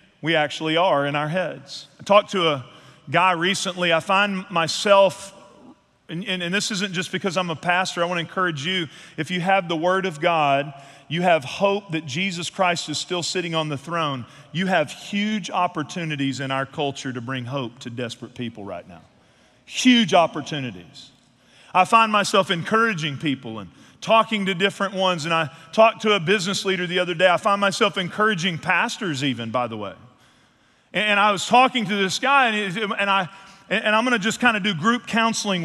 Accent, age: American, 40-59